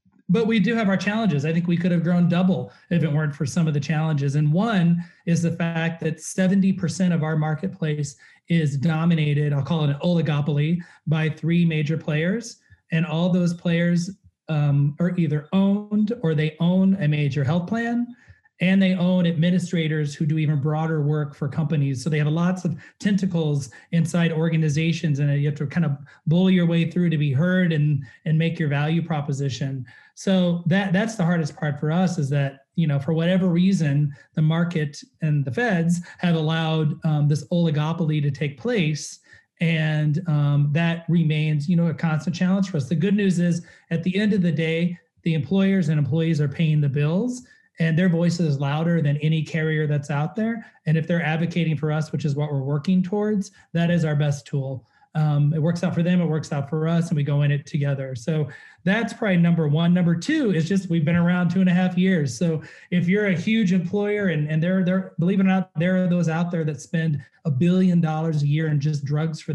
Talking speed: 210 wpm